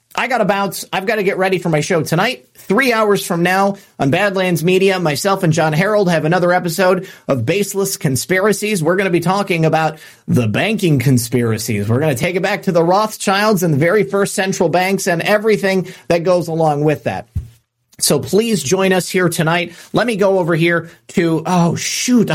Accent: American